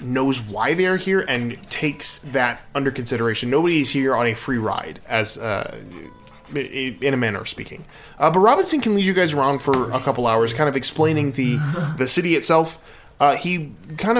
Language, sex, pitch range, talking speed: English, male, 125-155 Hz, 195 wpm